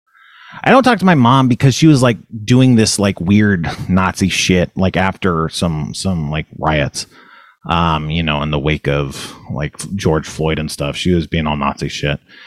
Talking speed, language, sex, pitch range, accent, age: 190 wpm, English, male, 95-120 Hz, American, 30-49